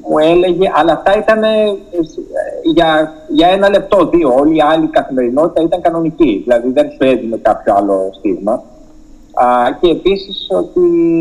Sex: male